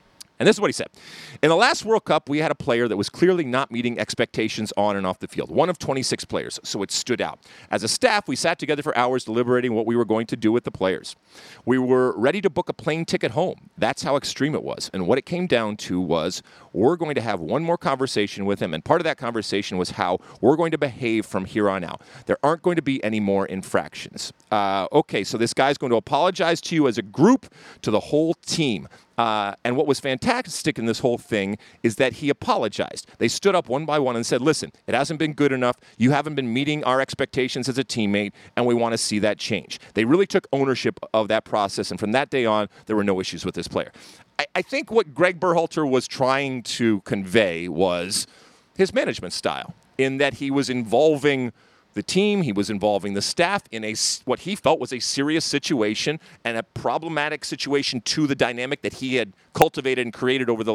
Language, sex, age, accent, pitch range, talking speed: English, male, 40-59, American, 110-155 Hz, 230 wpm